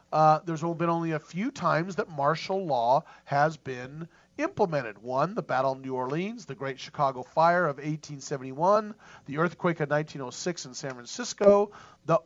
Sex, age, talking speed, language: male, 40-59, 160 wpm, English